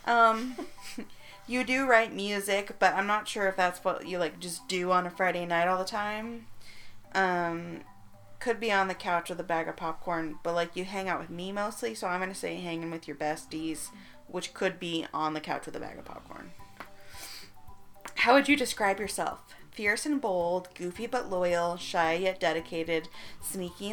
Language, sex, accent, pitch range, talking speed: English, female, American, 170-220 Hz, 195 wpm